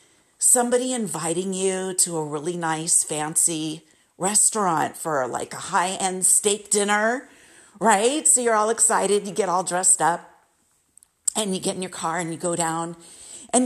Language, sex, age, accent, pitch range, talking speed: English, female, 50-69, American, 190-270 Hz, 160 wpm